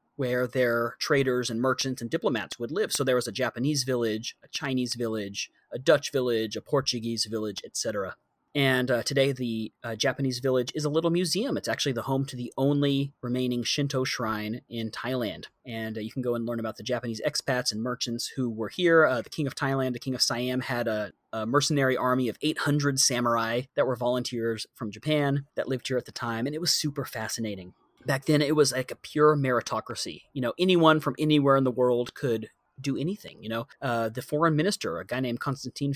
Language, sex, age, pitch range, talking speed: English, male, 30-49, 115-140 Hz, 210 wpm